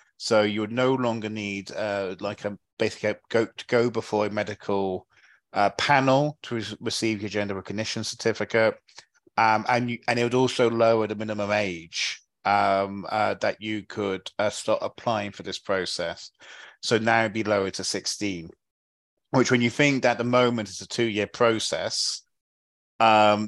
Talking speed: 175 wpm